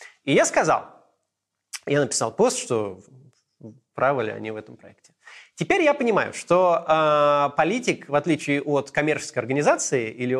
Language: Russian